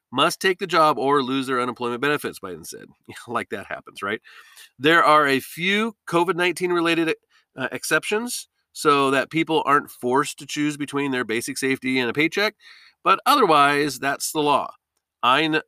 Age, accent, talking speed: 40-59, American, 165 wpm